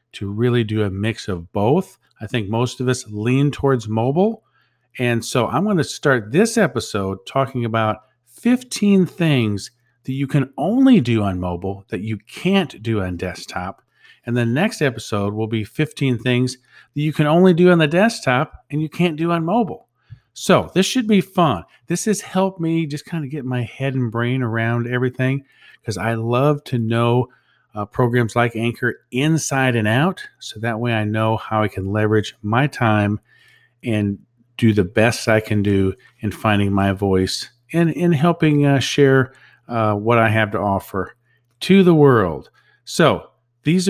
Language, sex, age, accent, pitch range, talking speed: English, male, 50-69, American, 110-150 Hz, 180 wpm